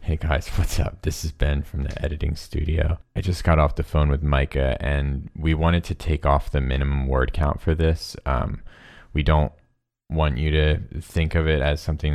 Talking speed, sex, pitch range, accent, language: 205 wpm, male, 70-85 Hz, American, English